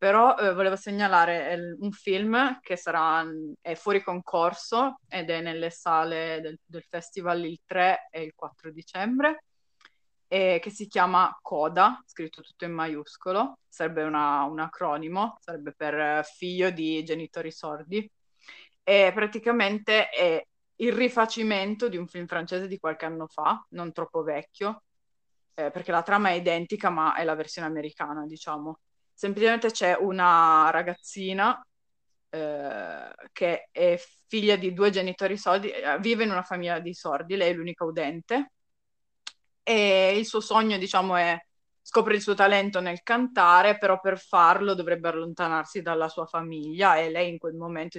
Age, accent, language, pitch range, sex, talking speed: 20-39, native, Italian, 160-200 Hz, female, 150 wpm